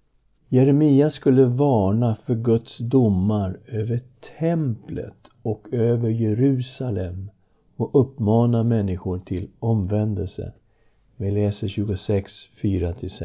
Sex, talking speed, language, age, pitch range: male, 85 wpm, Swedish, 60-79, 105-140 Hz